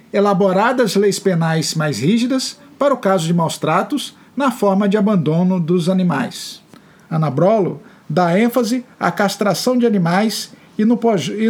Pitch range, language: 180-220 Hz, Portuguese